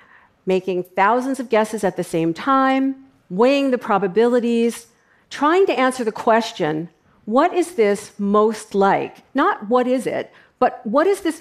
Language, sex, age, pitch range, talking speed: Russian, female, 50-69, 190-265 Hz, 155 wpm